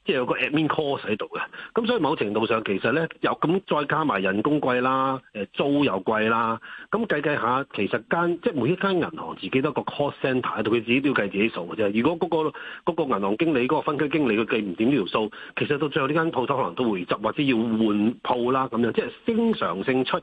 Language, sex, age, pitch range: Chinese, male, 40-59, 115-170 Hz